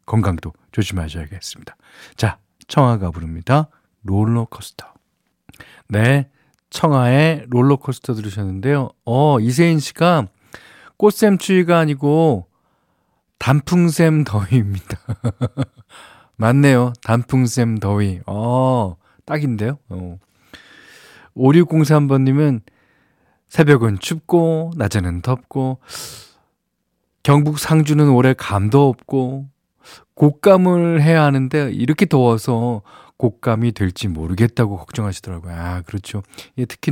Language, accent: Korean, native